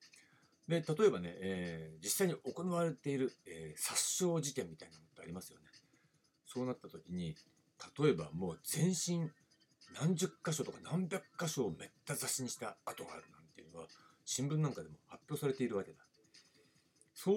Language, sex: Japanese, male